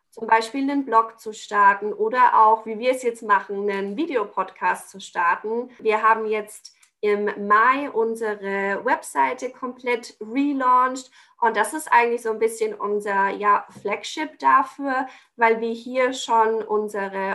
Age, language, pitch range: 20-39, German, 215-255 Hz